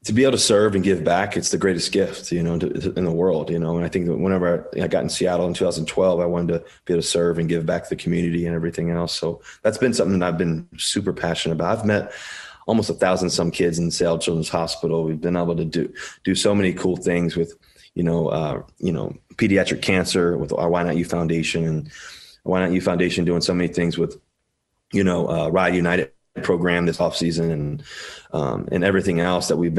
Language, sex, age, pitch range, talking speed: English, male, 30-49, 85-90 Hz, 240 wpm